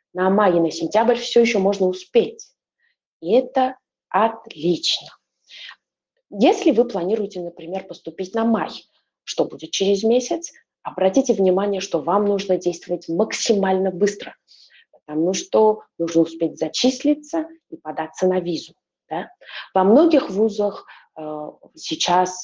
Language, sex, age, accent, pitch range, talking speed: Russian, female, 20-39, native, 165-225 Hz, 110 wpm